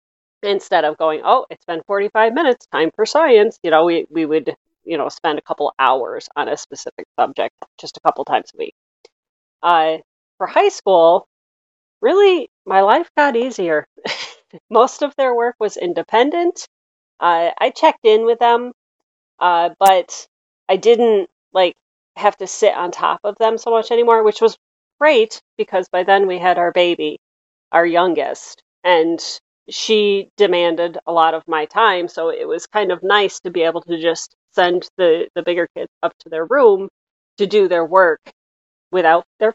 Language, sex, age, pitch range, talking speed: English, female, 40-59, 165-235 Hz, 175 wpm